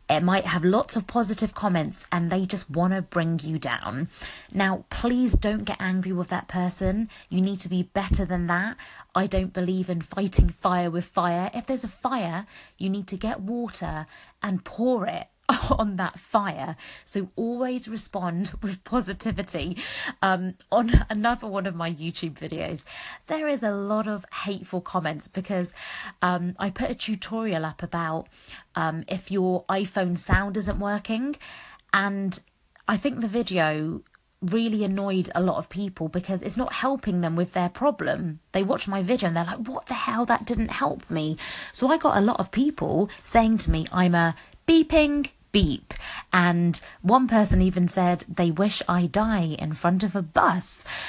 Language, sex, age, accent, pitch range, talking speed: English, female, 30-49, British, 180-225 Hz, 175 wpm